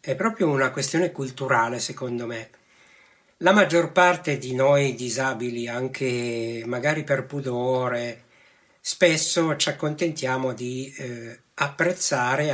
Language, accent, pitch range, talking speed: Italian, native, 125-150 Hz, 110 wpm